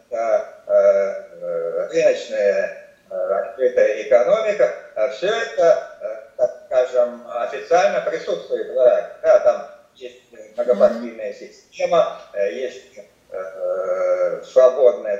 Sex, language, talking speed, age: male, Russian, 75 wpm, 50-69